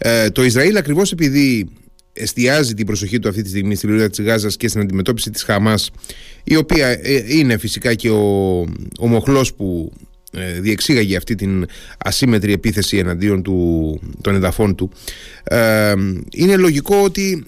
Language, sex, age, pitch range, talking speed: Greek, male, 30-49, 105-150 Hz, 155 wpm